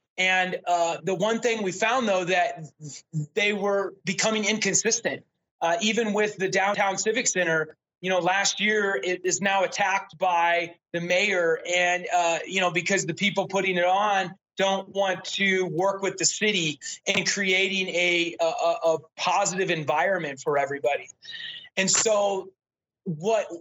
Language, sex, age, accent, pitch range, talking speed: English, male, 30-49, American, 170-200 Hz, 150 wpm